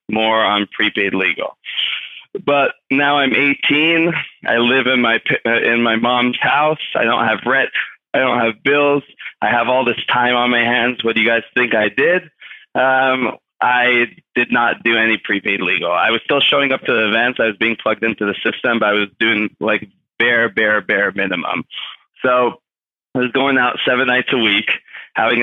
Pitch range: 110-130 Hz